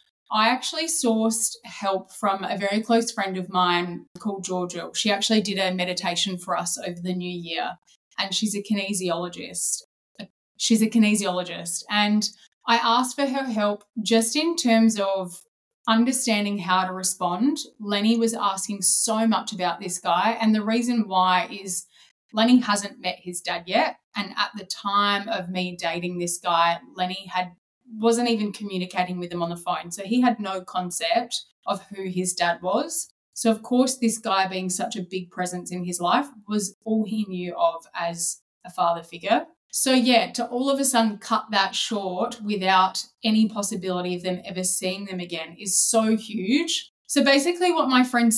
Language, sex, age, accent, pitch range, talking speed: English, female, 20-39, Australian, 185-230 Hz, 175 wpm